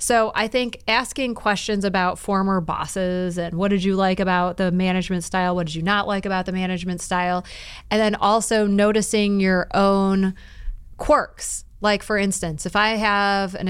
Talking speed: 175 wpm